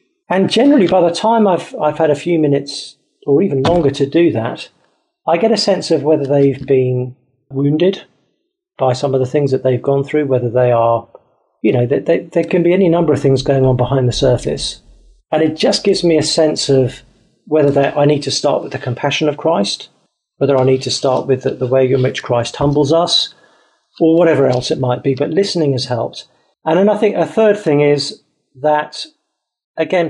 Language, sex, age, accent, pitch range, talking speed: English, male, 40-59, British, 130-170 Hz, 210 wpm